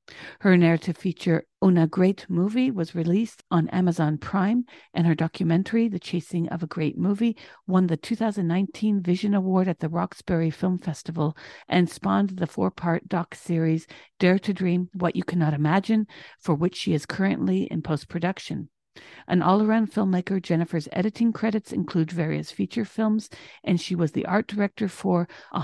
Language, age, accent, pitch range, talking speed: English, 50-69, American, 170-205 Hz, 160 wpm